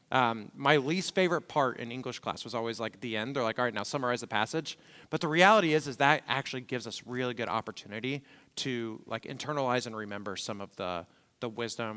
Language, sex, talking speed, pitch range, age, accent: English, male, 215 wpm, 115-160 Hz, 30-49, American